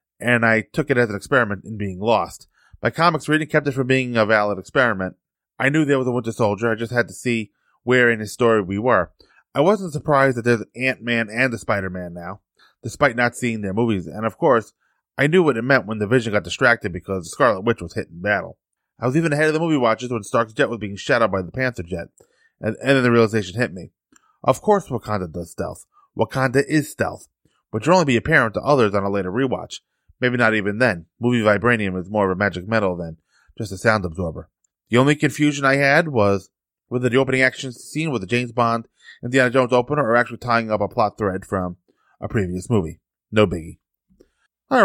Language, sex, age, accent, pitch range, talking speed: English, male, 20-39, American, 105-135 Hz, 225 wpm